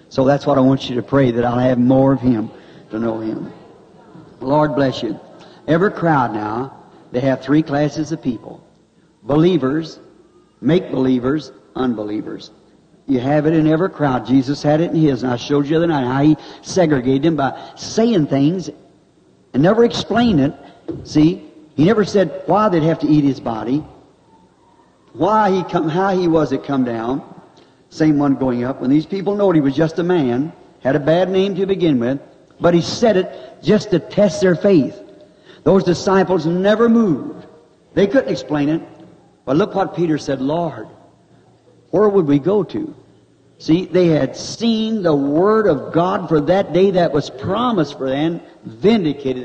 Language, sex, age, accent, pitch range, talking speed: English, male, 60-79, American, 135-175 Hz, 175 wpm